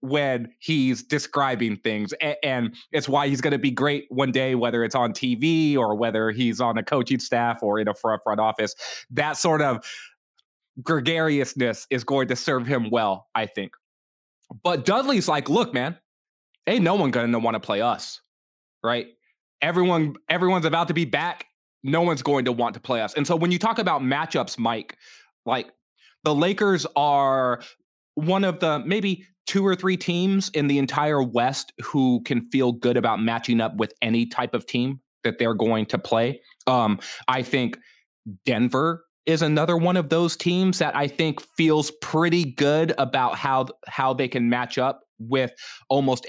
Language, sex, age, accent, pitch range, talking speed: English, male, 20-39, American, 120-155 Hz, 180 wpm